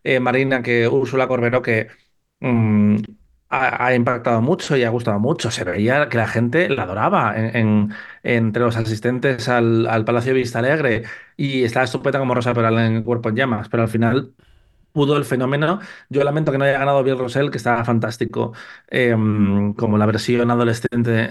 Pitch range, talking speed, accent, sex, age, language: 115-135 Hz, 185 wpm, Spanish, male, 30-49, Spanish